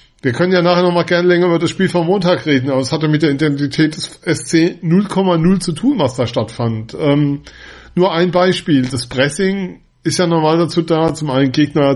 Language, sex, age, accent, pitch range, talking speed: German, male, 40-59, German, 140-170 Hz, 215 wpm